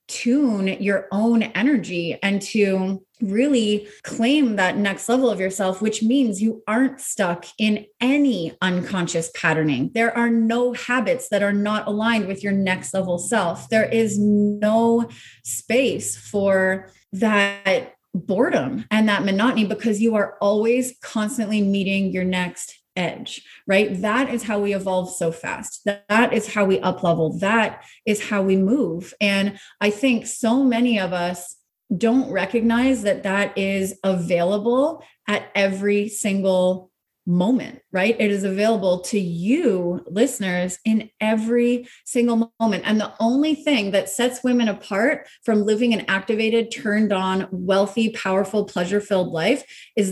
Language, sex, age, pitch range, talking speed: English, female, 20-39, 195-230 Hz, 145 wpm